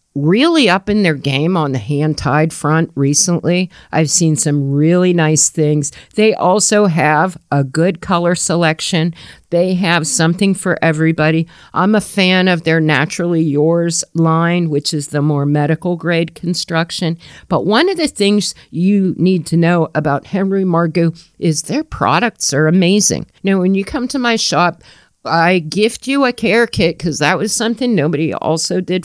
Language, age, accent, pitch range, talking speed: English, 50-69, American, 160-195 Hz, 165 wpm